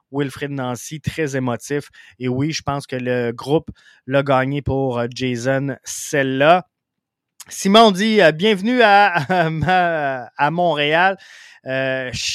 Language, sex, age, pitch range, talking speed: French, male, 20-39, 135-175 Hz, 120 wpm